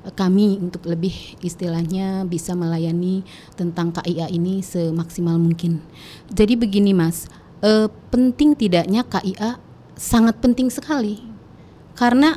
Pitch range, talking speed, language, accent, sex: 185-240 Hz, 105 wpm, Indonesian, native, female